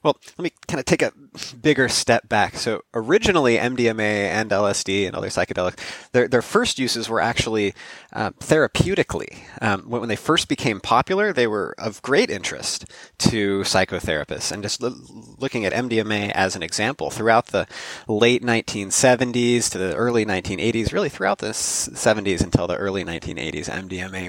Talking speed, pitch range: 160 wpm, 95-120 Hz